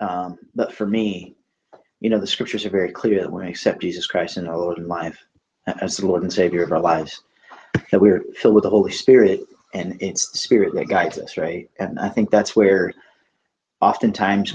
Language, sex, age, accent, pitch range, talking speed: English, male, 30-49, American, 95-125 Hz, 210 wpm